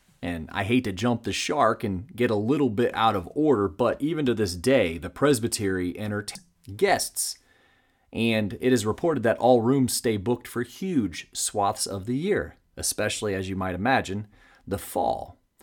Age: 30-49